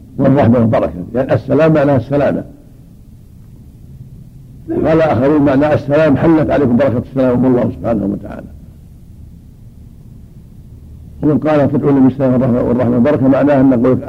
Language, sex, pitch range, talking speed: Arabic, male, 120-140 Hz, 115 wpm